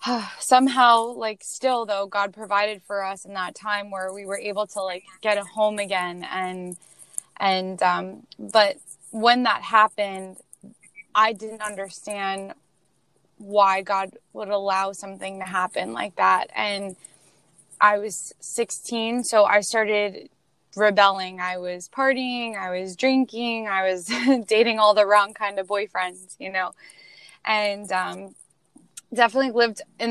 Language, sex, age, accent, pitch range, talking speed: English, female, 10-29, American, 195-220 Hz, 140 wpm